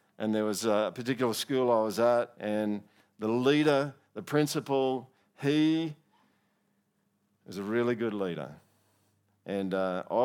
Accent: Australian